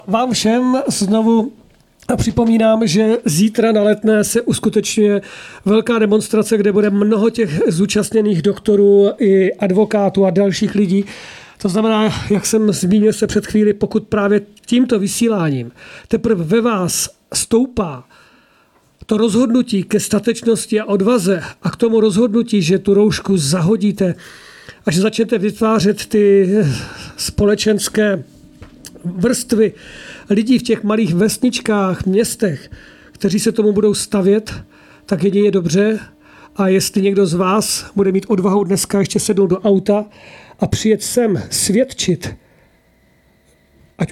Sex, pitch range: male, 195-220 Hz